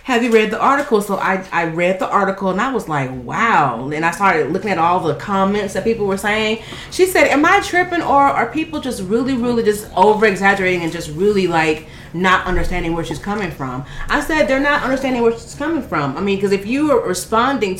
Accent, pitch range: American, 180-245 Hz